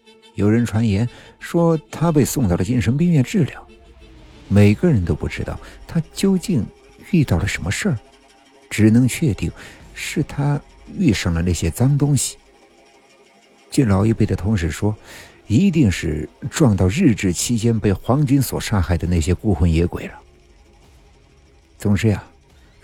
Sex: male